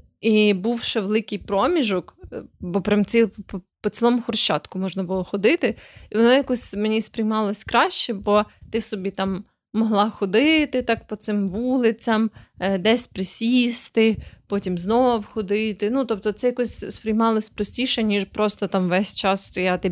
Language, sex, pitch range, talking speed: Ukrainian, female, 185-225 Hz, 140 wpm